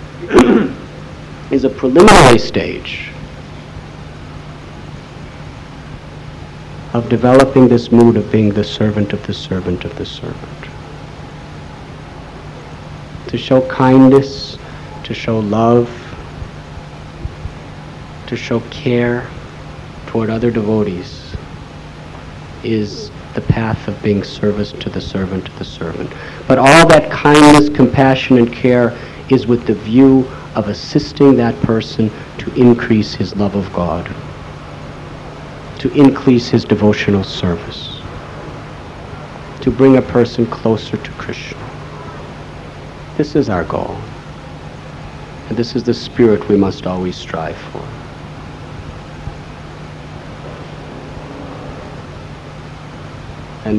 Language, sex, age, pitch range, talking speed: English, male, 50-69, 105-130 Hz, 100 wpm